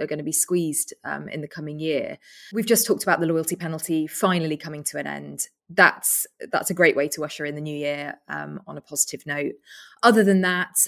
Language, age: English, 20-39